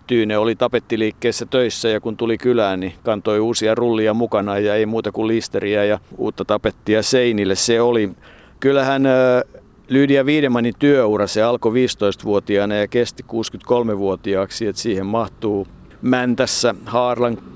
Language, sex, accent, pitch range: Finnish, male, native, 100-120 Hz